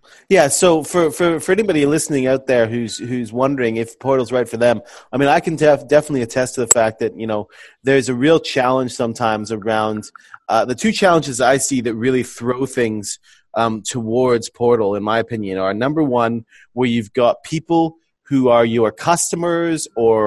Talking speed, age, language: 190 wpm, 30-49, English